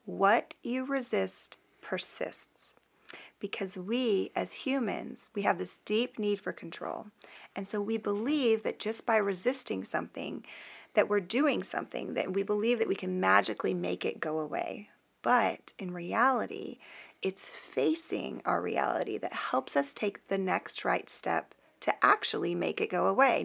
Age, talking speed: 30-49, 155 wpm